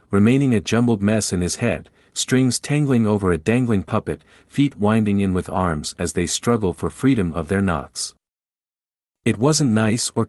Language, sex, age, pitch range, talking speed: English, male, 50-69, 85-120 Hz, 175 wpm